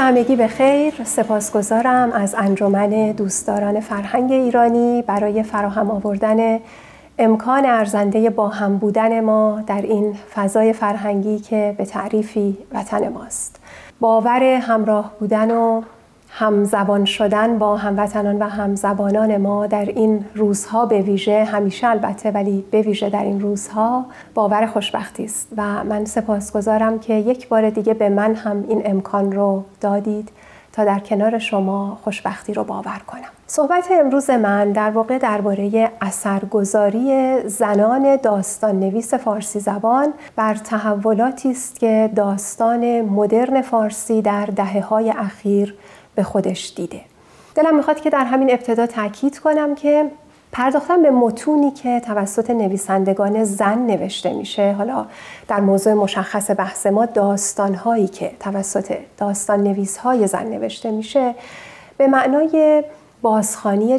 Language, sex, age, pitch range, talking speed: Persian, female, 40-59, 205-240 Hz, 130 wpm